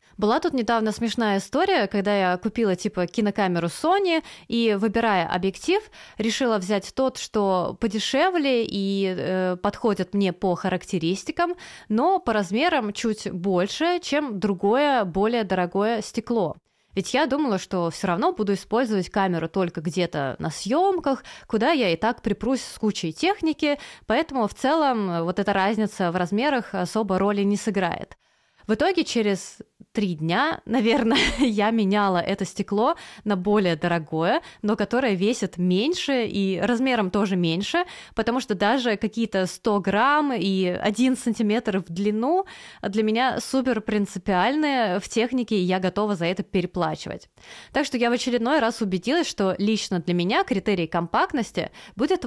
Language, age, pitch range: Russian, 20-39, 190-245 Hz